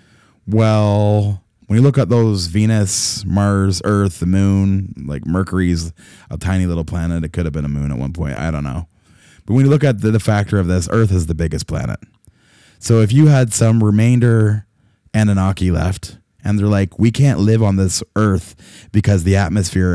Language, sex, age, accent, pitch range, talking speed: English, male, 30-49, American, 95-110 Hz, 195 wpm